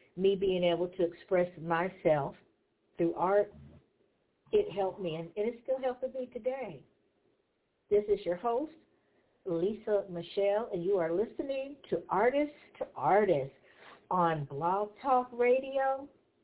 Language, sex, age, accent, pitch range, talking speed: English, female, 60-79, American, 175-225 Hz, 130 wpm